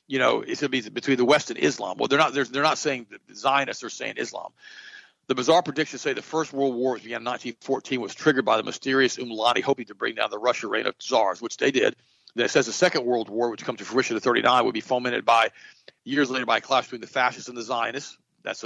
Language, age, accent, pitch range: English, 50-69, American, 120-140 Hz